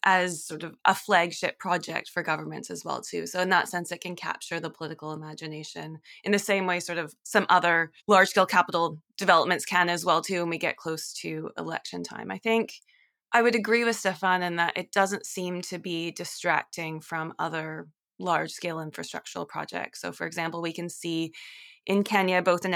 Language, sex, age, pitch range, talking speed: English, female, 20-39, 170-195 Hz, 190 wpm